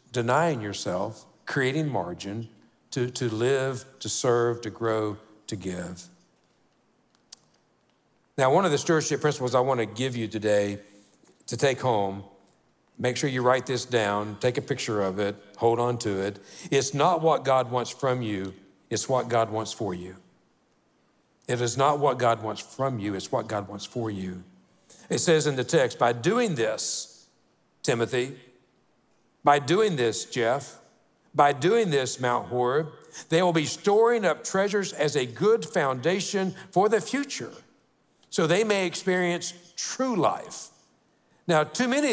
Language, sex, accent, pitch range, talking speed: English, male, American, 110-155 Hz, 155 wpm